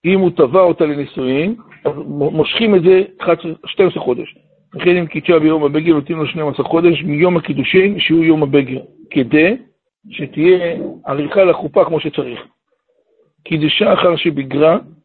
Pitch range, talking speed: 150-175 Hz, 130 wpm